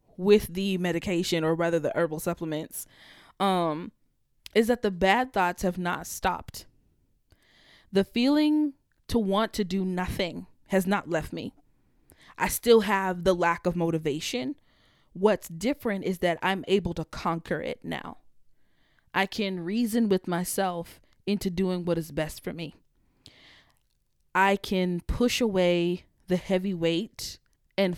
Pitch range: 170-195 Hz